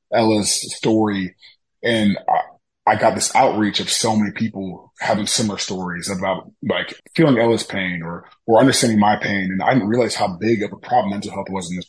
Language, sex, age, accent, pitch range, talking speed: English, male, 20-39, American, 95-110 Hz, 195 wpm